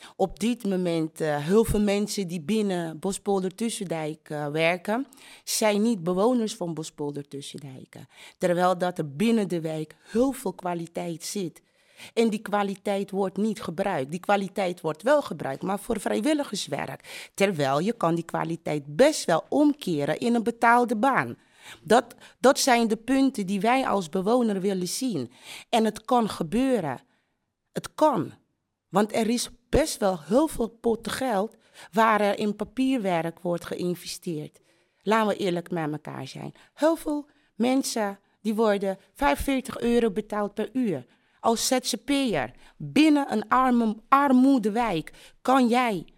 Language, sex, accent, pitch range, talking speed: English, female, Dutch, 180-245 Hz, 140 wpm